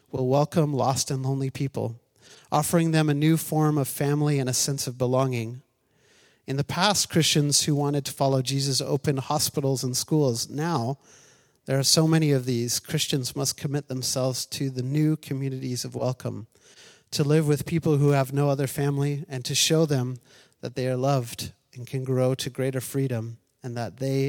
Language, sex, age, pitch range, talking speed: English, male, 30-49, 130-155 Hz, 185 wpm